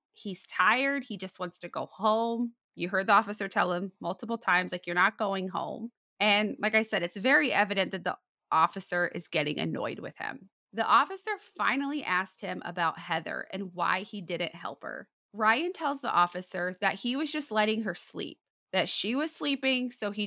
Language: English